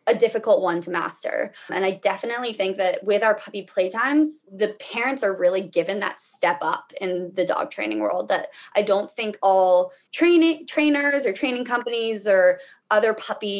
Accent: American